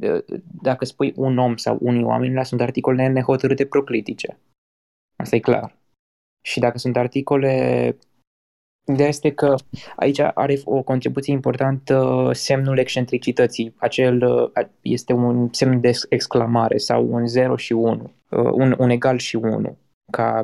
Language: Romanian